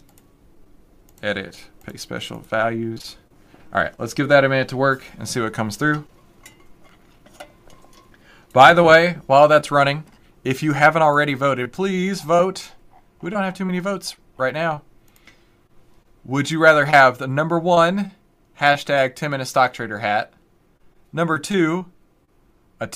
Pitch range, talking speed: 115-160 Hz, 140 wpm